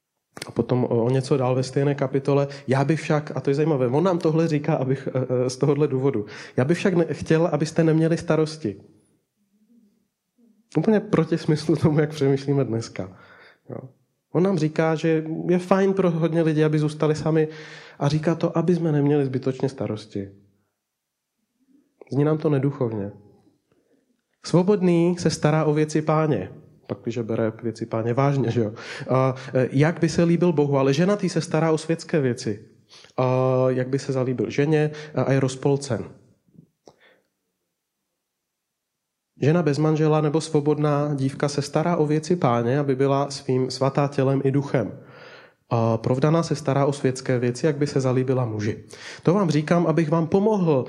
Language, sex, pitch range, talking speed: Czech, male, 130-160 Hz, 160 wpm